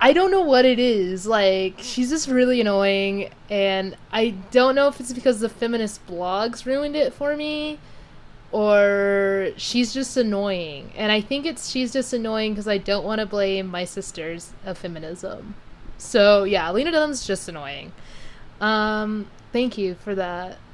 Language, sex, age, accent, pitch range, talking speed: English, female, 20-39, American, 190-235 Hz, 165 wpm